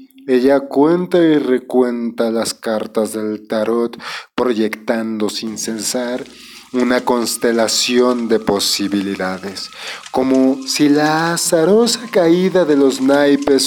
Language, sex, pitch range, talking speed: Spanish, male, 110-130 Hz, 100 wpm